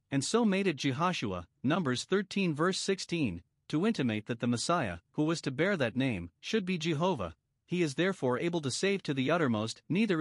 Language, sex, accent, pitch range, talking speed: English, male, American, 120-175 Hz, 195 wpm